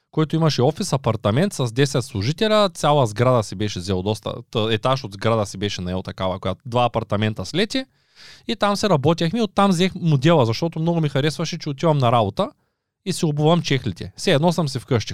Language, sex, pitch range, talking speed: Bulgarian, male, 125-175 Hz, 190 wpm